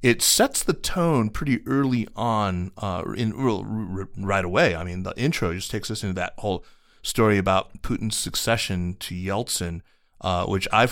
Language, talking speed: English, 180 wpm